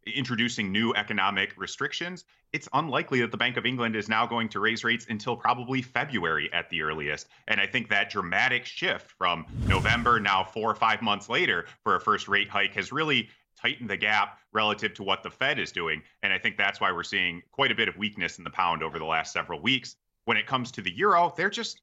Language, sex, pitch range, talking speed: English, male, 105-125 Hz, 225 wpm